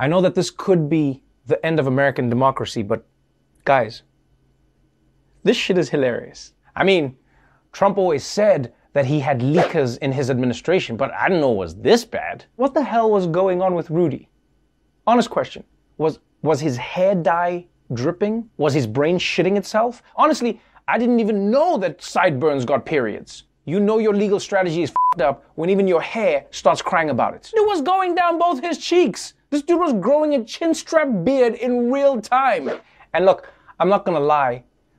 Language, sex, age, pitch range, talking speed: English, male, 30-49, 155-220 Hz, 180 wpm